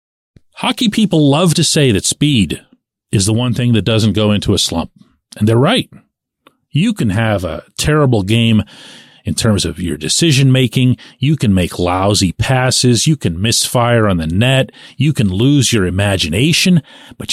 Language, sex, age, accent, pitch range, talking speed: English, male, 40-59, American, 110-155 Hz, 165 wpm